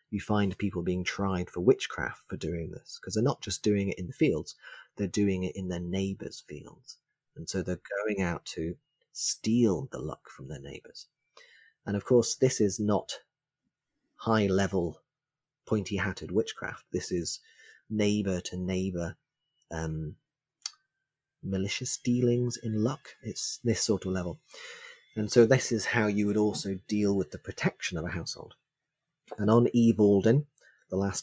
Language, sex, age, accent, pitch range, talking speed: English, male, 30-49, British, 90-115 Hz, 160 wpm